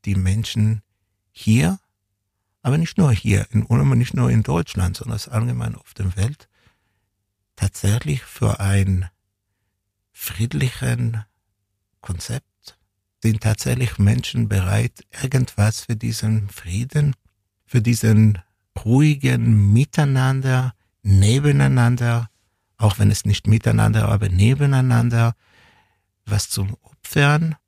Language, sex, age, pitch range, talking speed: German, male, 60-79, 100-120 Hz, 100 wpm